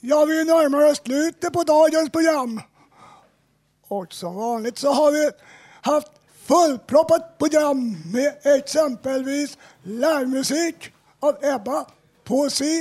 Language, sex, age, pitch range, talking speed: Swedish, male, 50-69, 235-295 Hz, 110 wpm